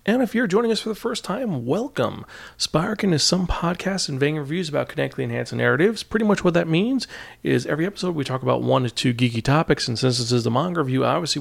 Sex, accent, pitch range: male, American, 130-185 Hz